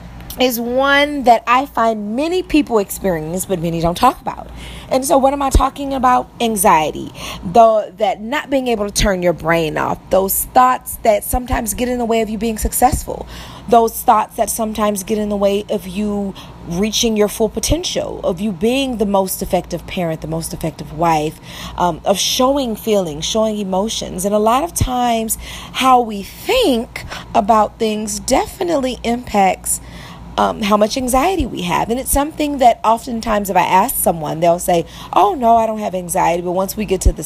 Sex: female